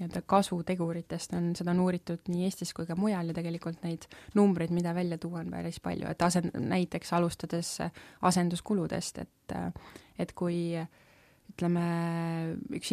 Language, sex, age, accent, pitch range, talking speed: English, female, 20-39, Finnish, 165-185 Hz, 140 wpm